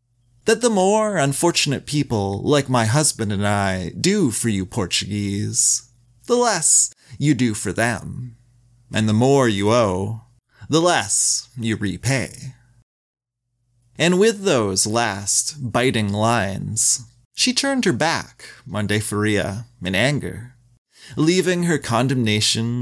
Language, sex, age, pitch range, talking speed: English, male, 30-49, 110-150 Hz, 120 wpm